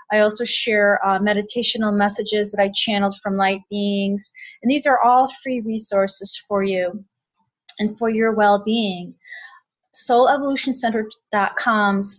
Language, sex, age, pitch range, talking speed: English, female, 30-49, 200-240 Hz, 125 wpm